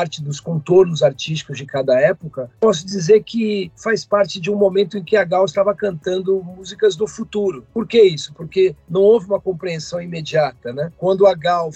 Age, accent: 50-69, Brazilian